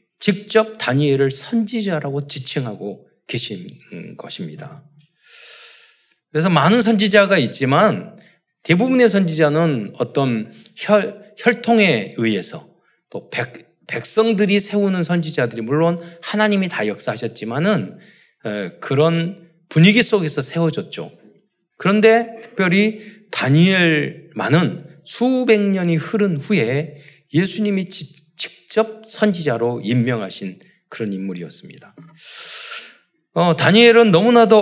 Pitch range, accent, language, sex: 150-215 Hz, native, Korean, male